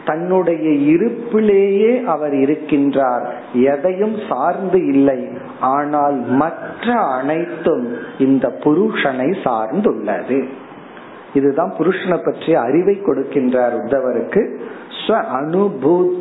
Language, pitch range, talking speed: Tamil, 140-195 Hz, 45 wpm